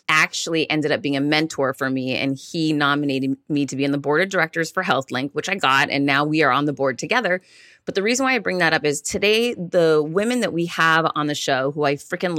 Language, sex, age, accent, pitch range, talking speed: English, female, 30-49, American, 145-185 Hz, 255 wpm